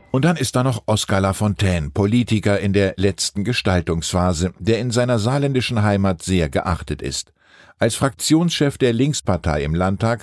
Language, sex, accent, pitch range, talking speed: German, male, German, 90-120 Hz, 155 wpm